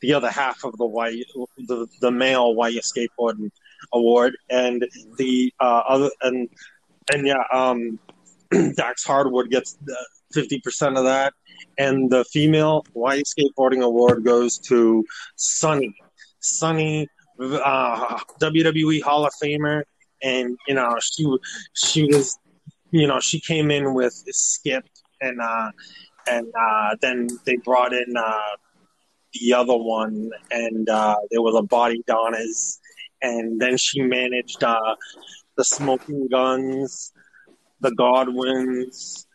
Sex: male